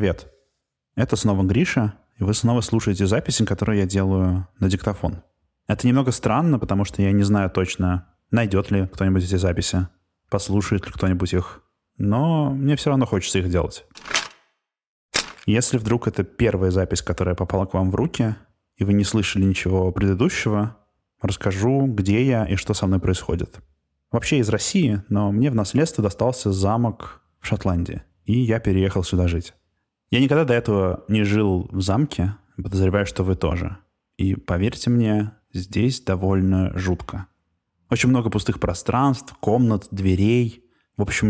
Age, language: 20-39, Russian